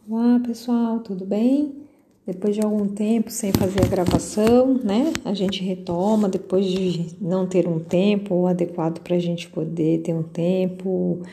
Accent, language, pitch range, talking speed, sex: Brazilian, Portuguese, 175-220 Hz, 160 wpm, female